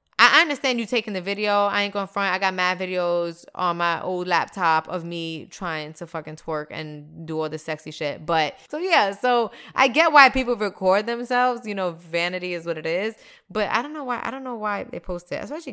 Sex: female